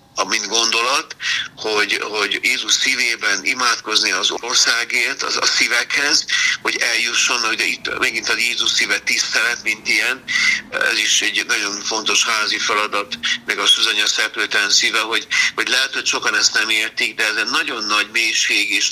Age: 60-79